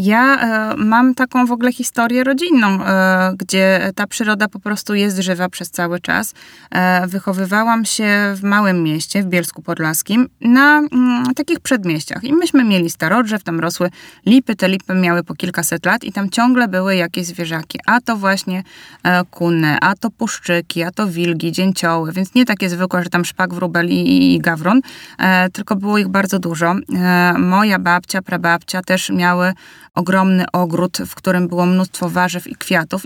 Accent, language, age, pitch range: native, Polish, 20-39, 175-200 Hz